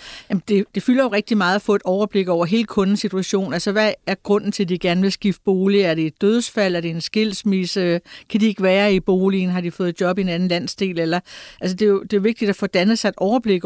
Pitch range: 190-225 Hz